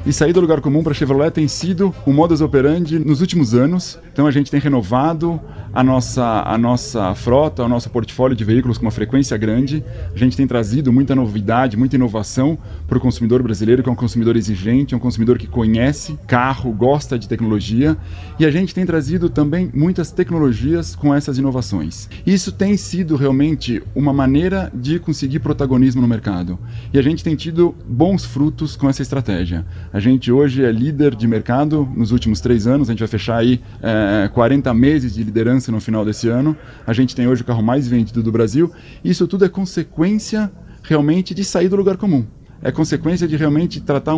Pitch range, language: 120-155 Hz, Portuguese